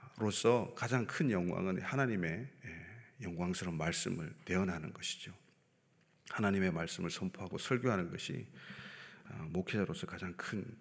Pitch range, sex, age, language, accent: 95-135 Hz, male, 40-59, Korean, native